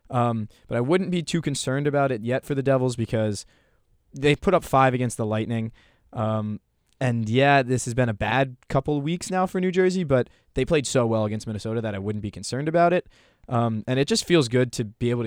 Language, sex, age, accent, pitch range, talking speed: English, male, 20-39, American, 110-135 Hz, 230 wpm